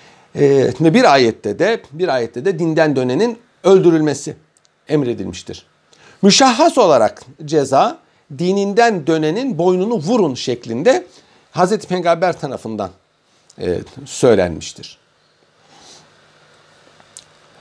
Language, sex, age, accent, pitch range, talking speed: Turkish, male, 60-79, native, 150-205 Hz, 75 wpm